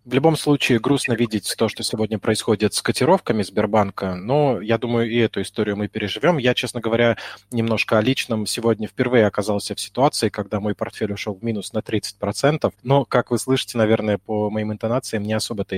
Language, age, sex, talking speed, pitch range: Russian, 20-39, male, 185 wpm, 105-125 Hz